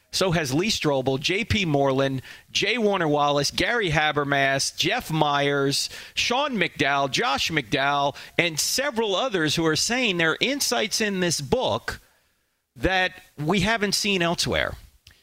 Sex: male